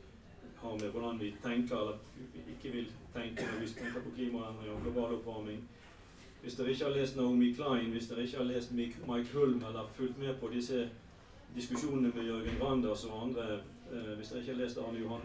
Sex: male